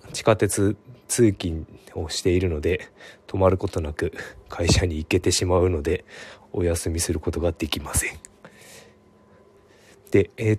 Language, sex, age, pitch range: Japanese, male, 20-39, 85-105 Hz